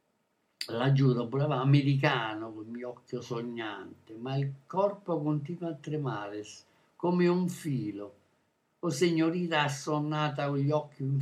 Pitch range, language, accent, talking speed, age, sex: 125-155 Hz, Italian, native, 130 wpm, 60-79, male